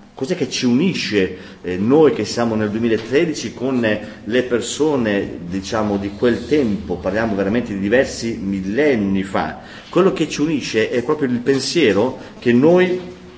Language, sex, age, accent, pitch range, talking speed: Italian, male, 40-59, native, 105-150 Hz, 150 wpm